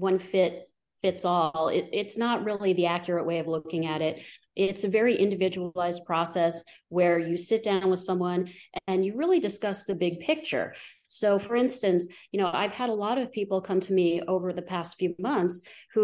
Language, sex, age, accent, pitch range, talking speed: English, female, 30-49, American, 165-190 Hz, 195 wpm